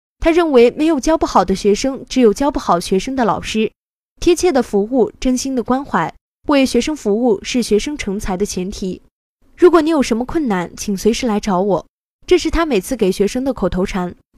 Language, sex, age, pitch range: Chinese, female, 10-29, 200-275 Hz